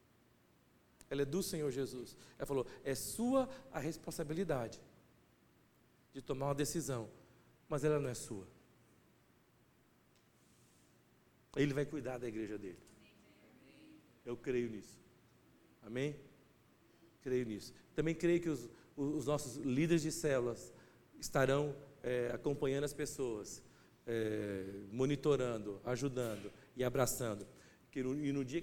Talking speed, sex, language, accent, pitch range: 115 wpm, male, Portuguese, Brazilian, 125-180 Hz